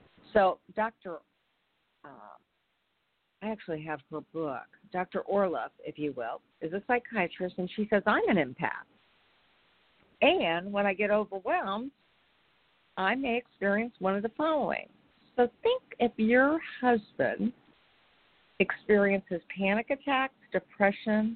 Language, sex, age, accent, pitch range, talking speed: English, female, 50-69, American, 170-235 Hz, 120 wpm